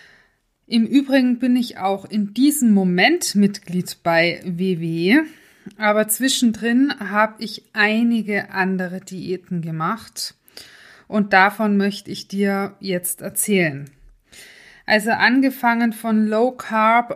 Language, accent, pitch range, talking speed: German, German, 190-230 Hz, 110 wpm